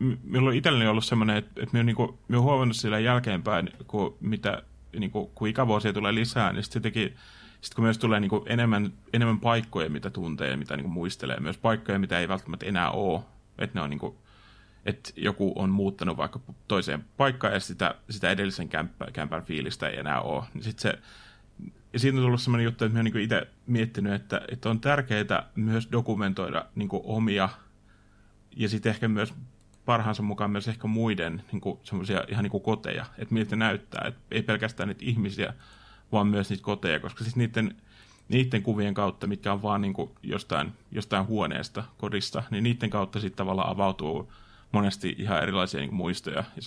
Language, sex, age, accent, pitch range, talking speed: Finnish, male, 30-49, native, 100-115 Hz, 170 wpm